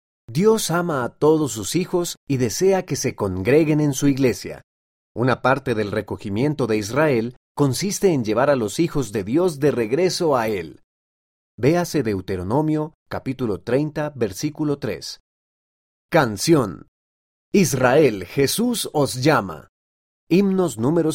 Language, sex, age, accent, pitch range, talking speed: Spanish, male, 40-59, Mexican, 105-170 Hz, 130 wpm